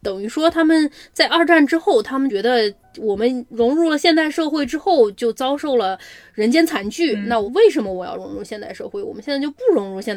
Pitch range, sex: 225-310 Hz, female